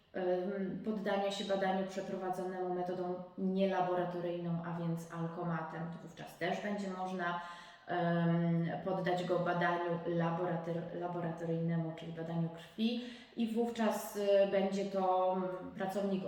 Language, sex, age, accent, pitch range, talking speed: Polish, female, 20-39, native, 170-200 Hz, 95 wpm